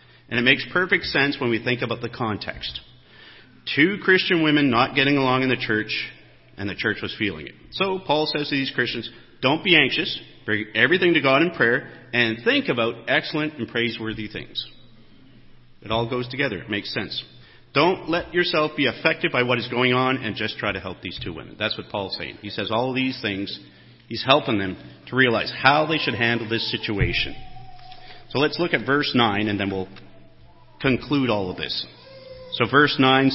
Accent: American